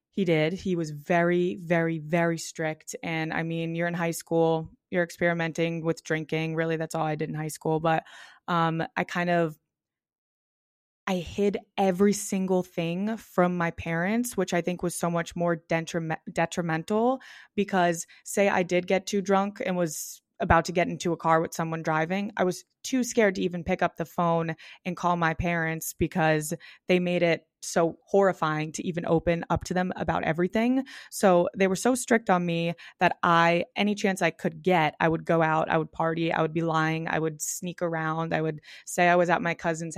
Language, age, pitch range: English, 20-39, 160-185 Hz